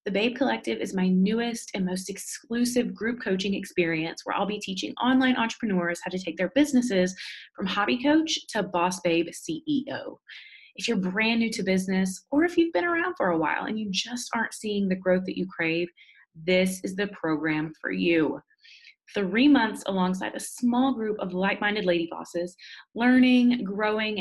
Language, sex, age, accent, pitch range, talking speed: English, female, 20-39, American, 185-250 Hz, 180 wpm